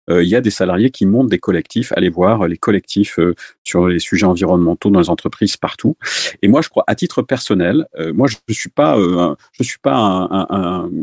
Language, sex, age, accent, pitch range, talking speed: French, male, 40-59, French, 90-120 Hz, 240 wpm